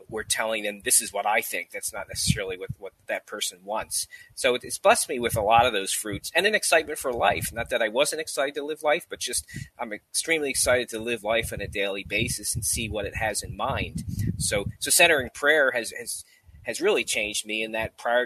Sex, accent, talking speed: male, American, 235 wpm